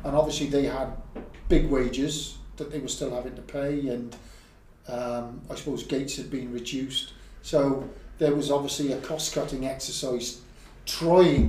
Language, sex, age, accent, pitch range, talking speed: English, male, 40-59, British, 120-150 Hz, 155 wpm